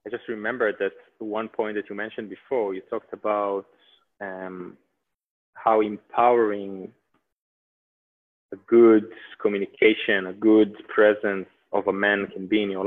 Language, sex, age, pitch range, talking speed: English, male, 20-39, 105-130 Hz, 135 wpm